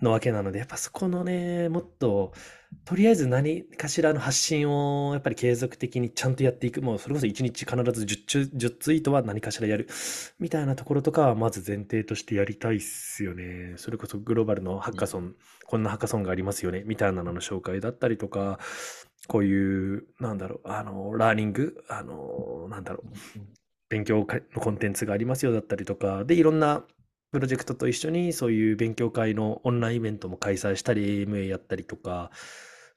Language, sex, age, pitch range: Japanese, male, 20-39, 105-145 Hz